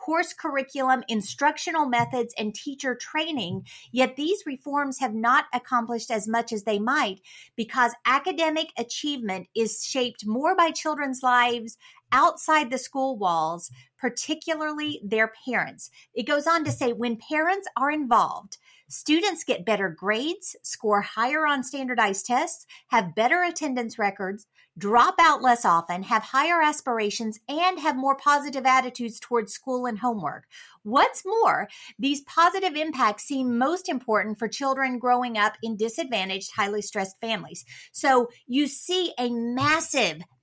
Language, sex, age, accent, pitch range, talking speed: English, female, 50-69, American, 220-300 Hz, 140 wpm